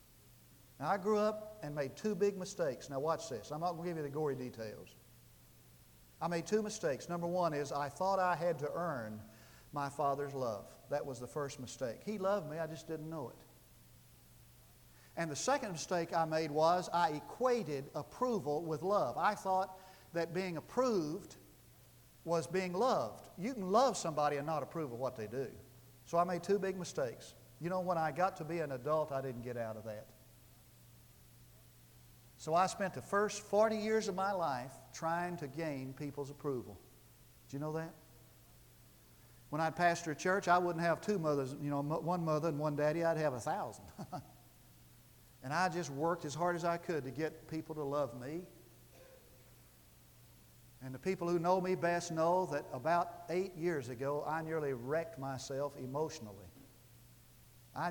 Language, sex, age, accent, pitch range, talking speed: English, male, 50-69, American, 130-175 Hz, 180 wpm